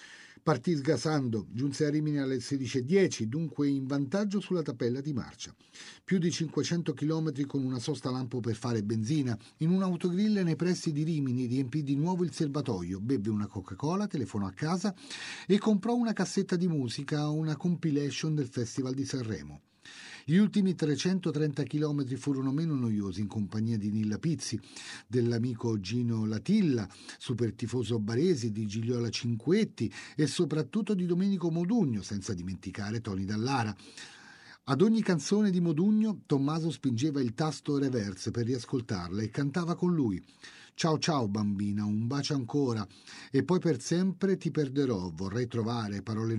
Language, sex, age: Italian, male, 40-59